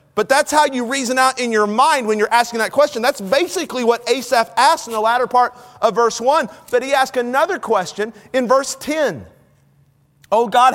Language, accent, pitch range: English, American, 160-270 Hz